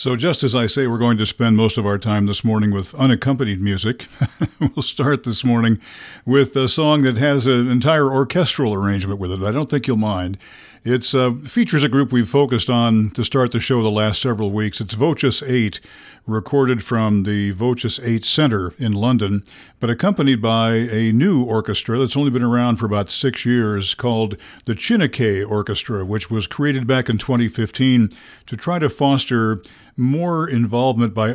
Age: 60-79